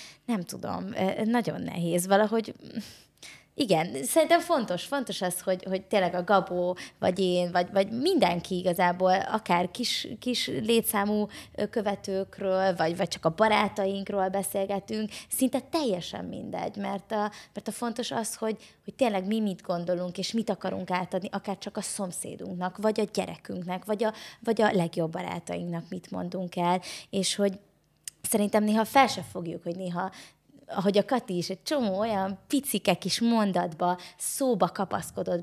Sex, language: female, Hungarian